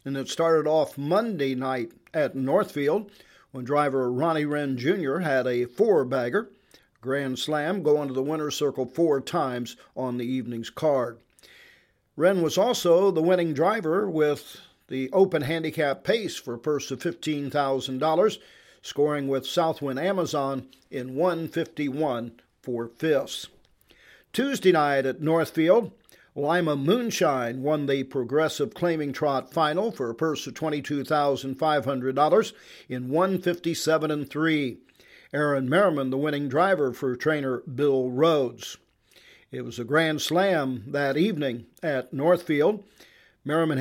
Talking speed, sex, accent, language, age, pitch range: 125 wpm, male, American, English, 50-69, 135-165 Hz